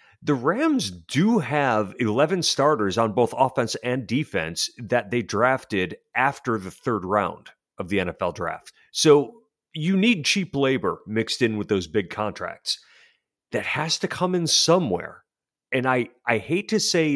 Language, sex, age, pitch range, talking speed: English, male, 40-59, 110-155 Hz, 155 wpm